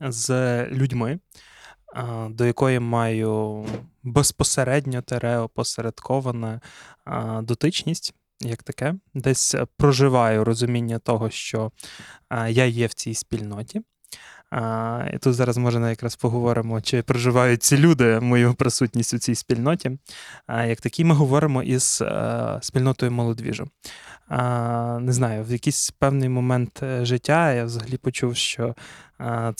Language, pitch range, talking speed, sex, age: Ukrainian, 120-140 Hz, 115 wpm, male, 20-39